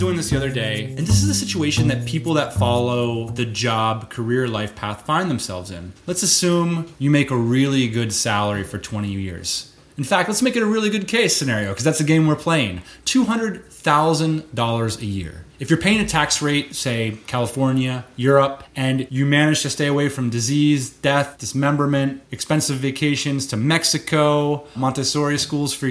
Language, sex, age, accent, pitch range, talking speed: English, male, 30-49, American, 115-160 Hz, 190 wpm